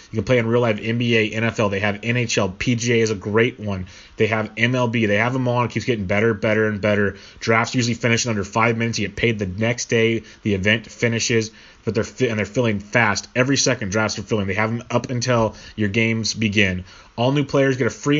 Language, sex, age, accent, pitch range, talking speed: English, male, 30-49, American, 105-125 Hz, 230 wpm